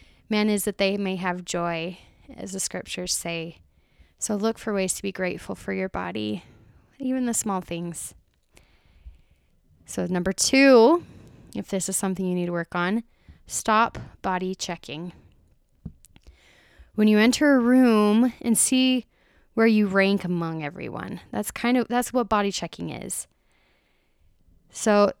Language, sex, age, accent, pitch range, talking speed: English, female, 20-39, American, 175-225 Hz, 145 wpm